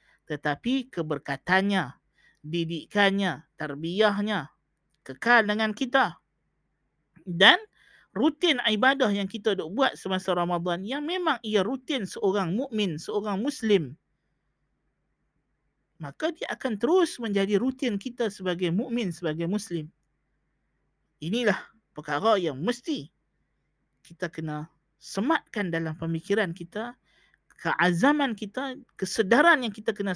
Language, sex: Malay, male